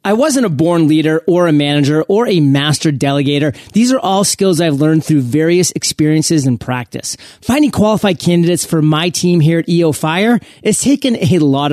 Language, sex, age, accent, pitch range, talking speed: English, male, 30-49, American, 145-195 Hz, 190 wpm